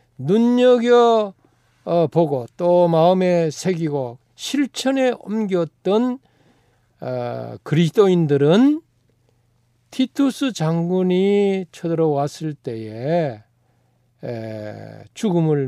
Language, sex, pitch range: Korean, male, 125-200 Hz